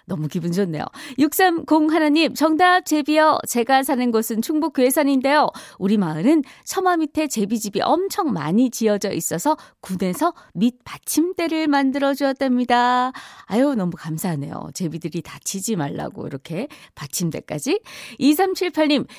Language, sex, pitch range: Korean, female, 190-305 Hz